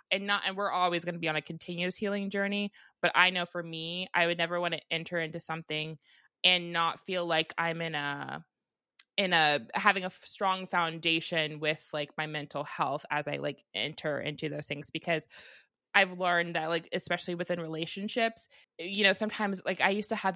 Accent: American